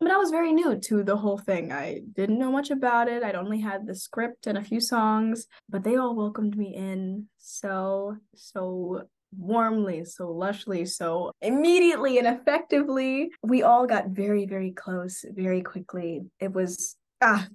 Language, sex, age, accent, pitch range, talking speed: English, female, 10-29, American, 185-225 Hz, 170 wpm